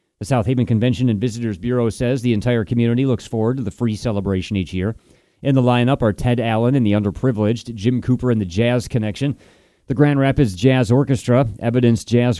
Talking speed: 200 wpm